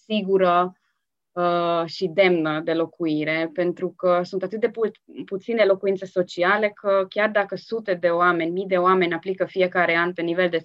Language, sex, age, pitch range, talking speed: Romanian, female, 20-39, 175-205 Hz, 170 wpm